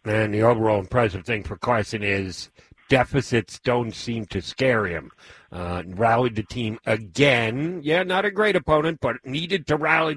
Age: 60-79